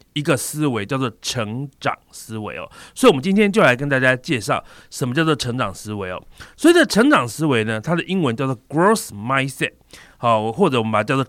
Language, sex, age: Chinese, male, 30-49